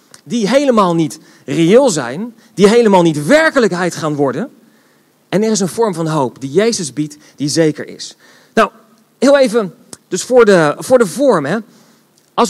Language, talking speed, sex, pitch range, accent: Dutch, 170 wpm, male, 185-245 Hz, Dutch